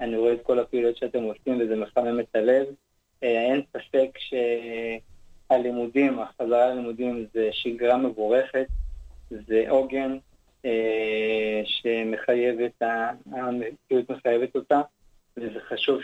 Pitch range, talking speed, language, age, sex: 110-130 Hz, 95 wpm, Hebrew, 20-39, male